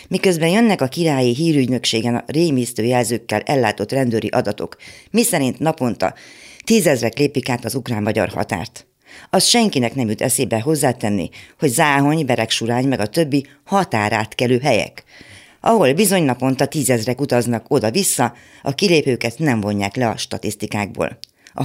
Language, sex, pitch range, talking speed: Hungarian, female, 115-150 Hz, 130 wpm